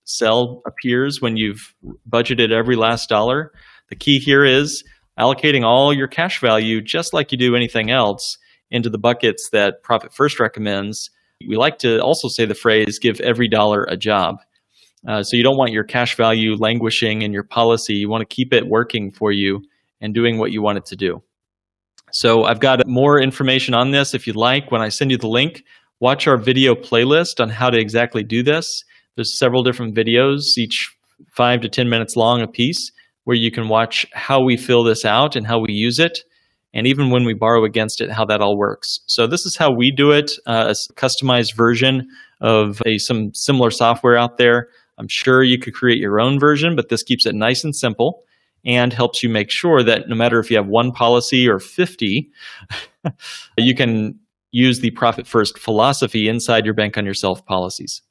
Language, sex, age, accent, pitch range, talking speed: English, male, 30-49, American, 110-130 Hz, 200 wpm